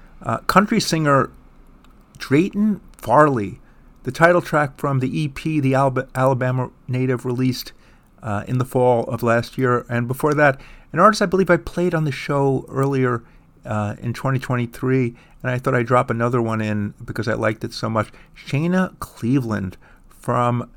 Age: 50-69